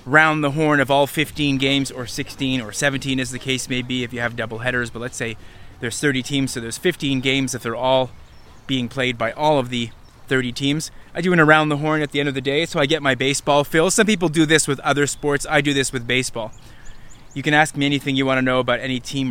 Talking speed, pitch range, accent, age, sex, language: 260 wpm, 125-155 Hz, American, 20-39, male, English